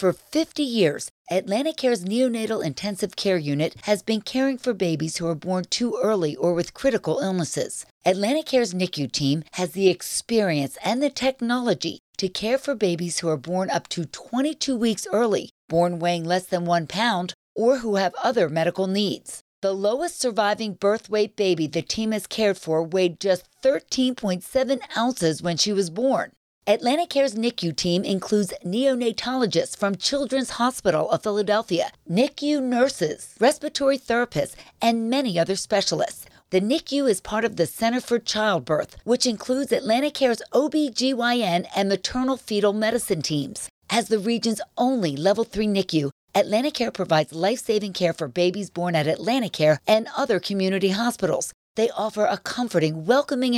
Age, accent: 50-69, American